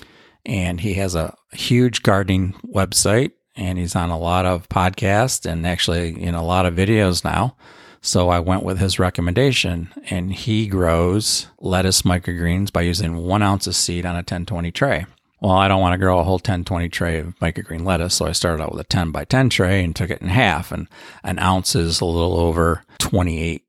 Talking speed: 200 wpm